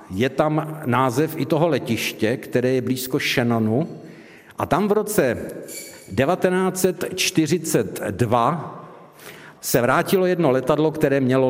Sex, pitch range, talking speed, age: male, 130-170 Hz, 110 wpm, 60-79